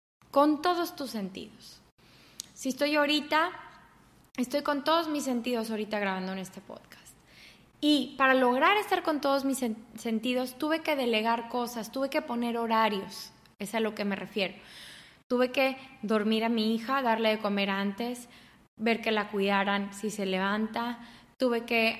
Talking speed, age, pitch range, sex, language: 160 wpm, 20-39, 215-270 Hz, female, English